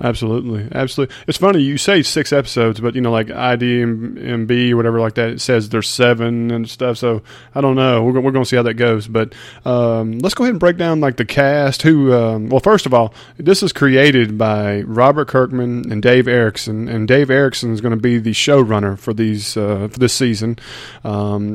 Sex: male